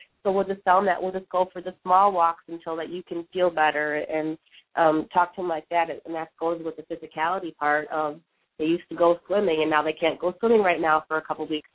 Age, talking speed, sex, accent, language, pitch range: 30-49, 265 wpm, female, American, English, 160-185 Hz